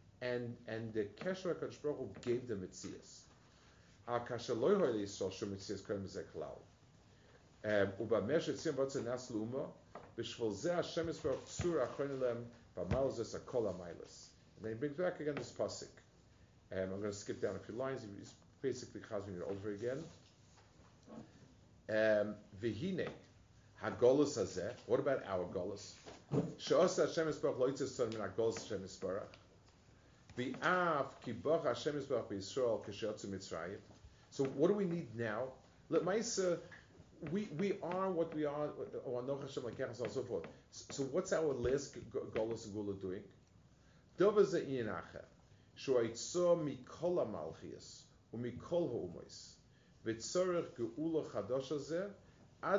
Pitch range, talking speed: 105-155 Hz, 75 wpm